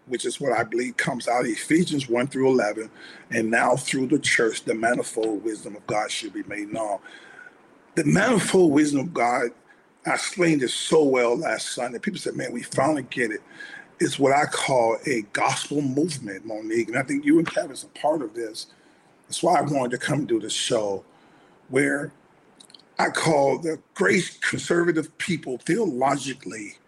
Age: 40-59